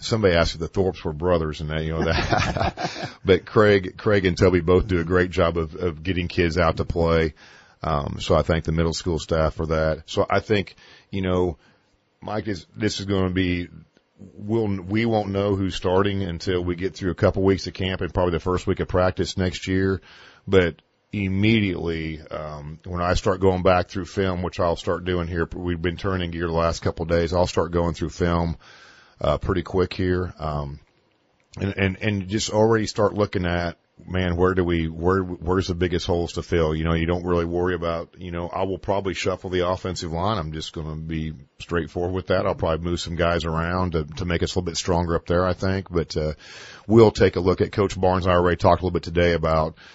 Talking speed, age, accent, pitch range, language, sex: 225 wpm, 40-59, American, 85-95 Hz, English, male